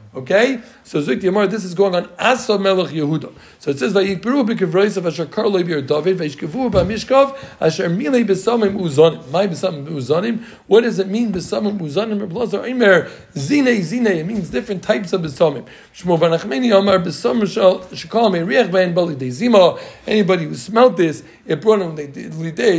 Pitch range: 165-215 Hz